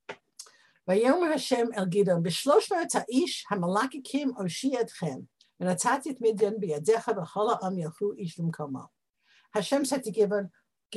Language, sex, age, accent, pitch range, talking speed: English, female, 60-79, American, 185-260 Hz, 90 wpm